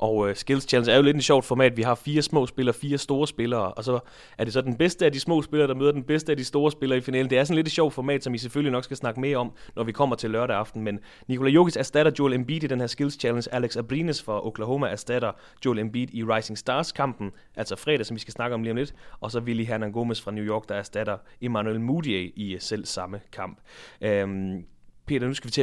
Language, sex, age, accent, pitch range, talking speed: English, male, 30-49, Danish, 110-140 Hz, 260 wpm